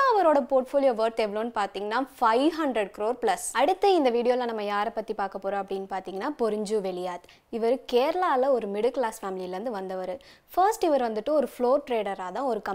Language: Tamil